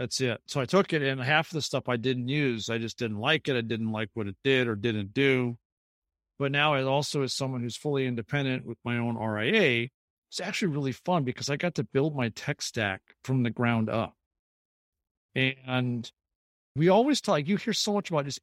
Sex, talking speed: male, 220 wpm